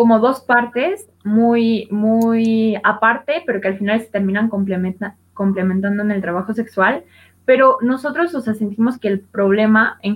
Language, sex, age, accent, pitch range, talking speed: Spanish, female, 20-39, Mexican, 195-230 Hz, 160 wpm